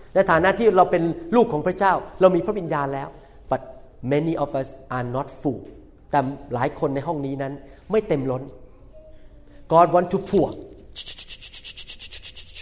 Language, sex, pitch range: Thai, male, 135-195 Hz